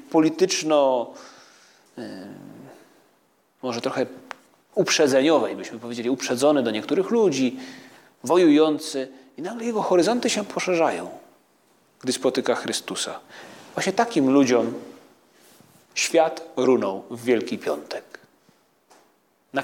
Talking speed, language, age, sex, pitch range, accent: 90 wpm, Polish, 40-59, male, 125-160 Hz, native